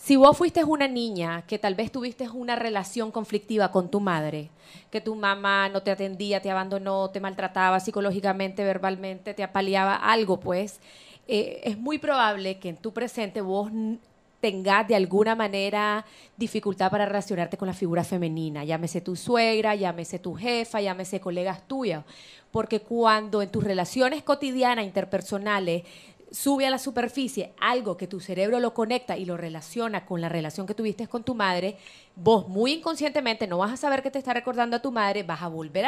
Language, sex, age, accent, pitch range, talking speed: Spanish, female, 30-49, American, 190-240 Hz, 175 wpm